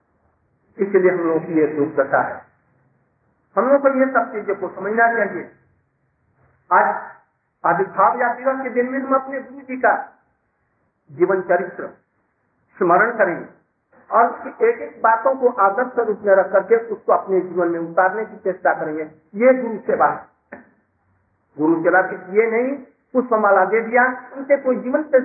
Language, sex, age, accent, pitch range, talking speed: Hindi, male, 50-69, native, 185-255 Hz, 155 wpm